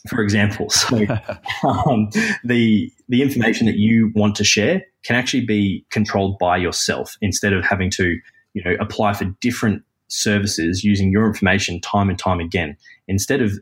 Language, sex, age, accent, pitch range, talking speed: English, male, 20-39, Australian, 95-105 Hz, 165 wpm